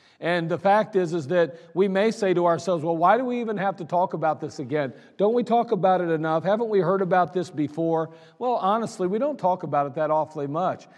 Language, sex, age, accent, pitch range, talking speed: English, male, 50-69, American, 165-205 Hz, 240 wpm